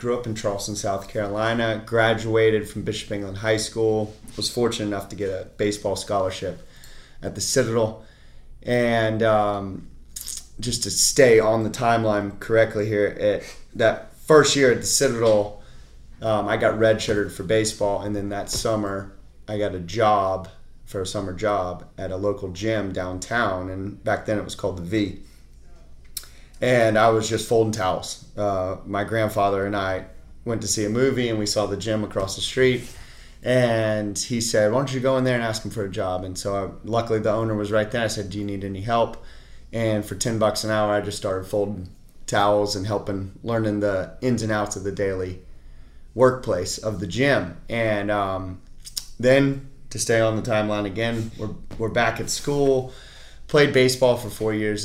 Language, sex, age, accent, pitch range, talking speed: English, male, 30-49, American, 100-115 Hz, 185 wpm